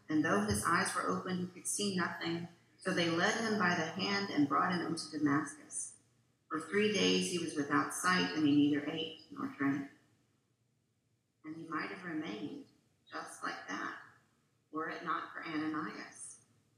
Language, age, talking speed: English, 50-69, 170 wpm